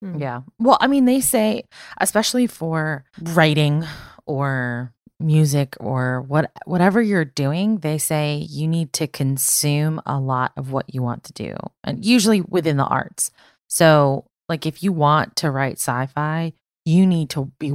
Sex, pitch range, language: female, 135-175 Hz, English